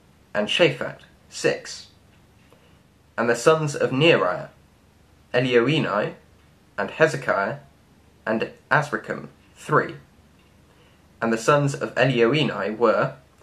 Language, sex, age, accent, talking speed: English, male, 20-39, British, 90 wpm